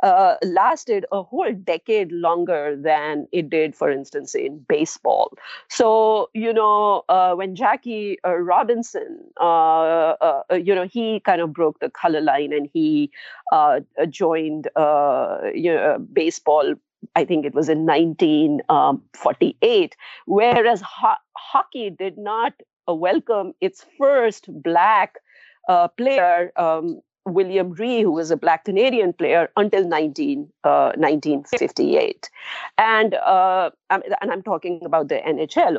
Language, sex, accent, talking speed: English, female, Indian, 135 wpm